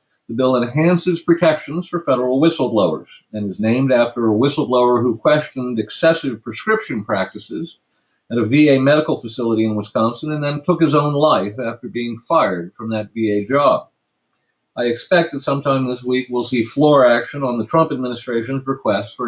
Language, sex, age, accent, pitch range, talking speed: English, male, 50-69, American, 120-145 Hz, 170 wpm